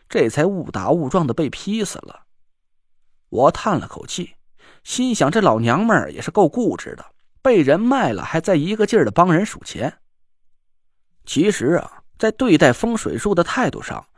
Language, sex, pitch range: Chinese, male, 160-220 Hz